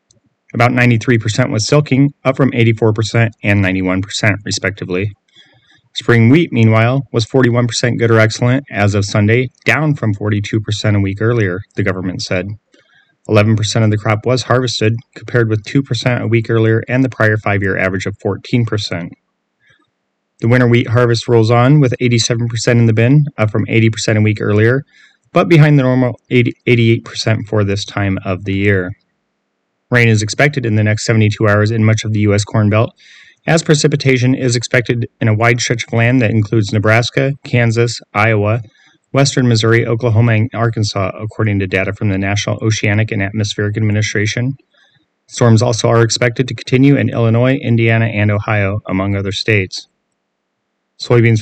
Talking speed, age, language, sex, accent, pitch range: 160 wpm, 30-49, English, male, American, 105-125 Hz